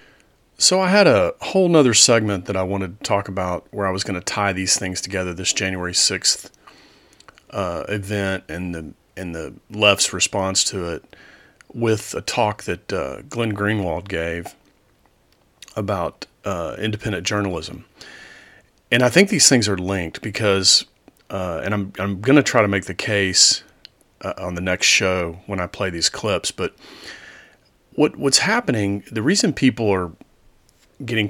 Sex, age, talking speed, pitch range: male, 40-59, 165 wpm, 95-120 Hz